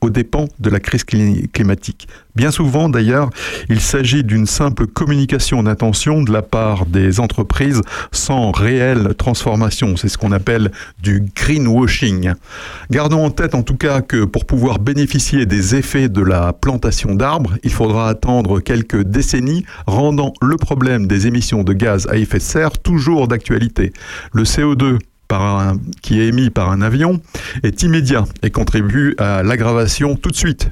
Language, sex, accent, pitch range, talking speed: French, male, French, 105-135 Hz, 155 wpm